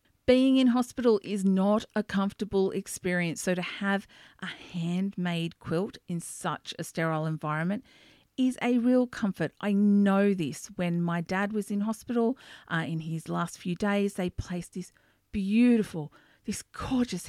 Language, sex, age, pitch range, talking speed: English, female, 50-69, 165-215 Hz, 155 wpm